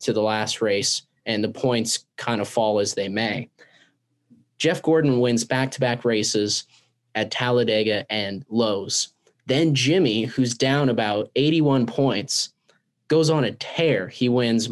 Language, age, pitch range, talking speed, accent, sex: English, 20-39, 110-140 Hz, 145 wpm, American, male